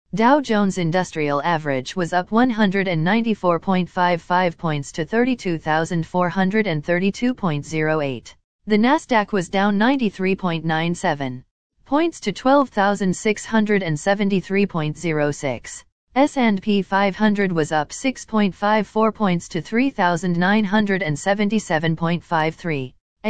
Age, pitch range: 40-59, 165-215 Hz